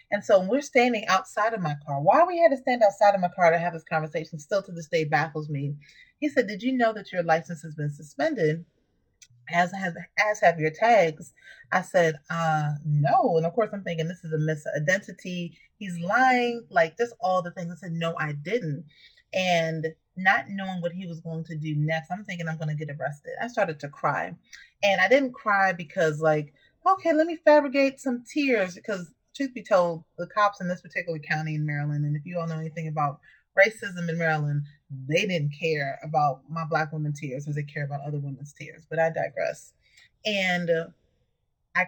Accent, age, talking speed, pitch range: American, 30-49, 210 wpm, 155-205 Hz